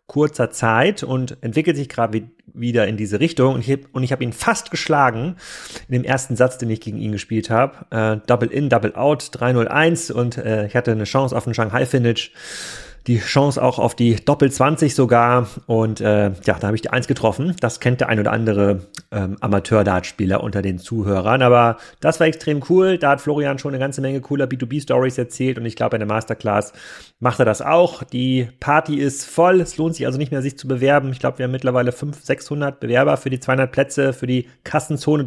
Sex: male